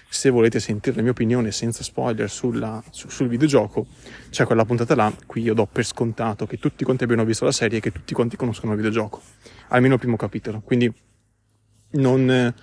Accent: native